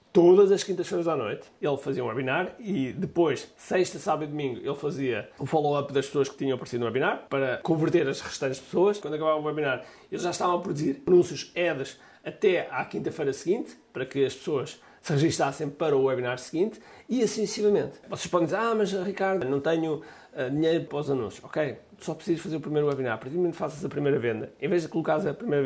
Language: Portuguese